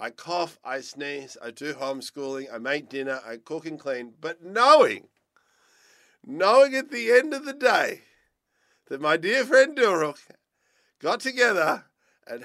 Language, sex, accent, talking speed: English, male, Australian, 150 wpm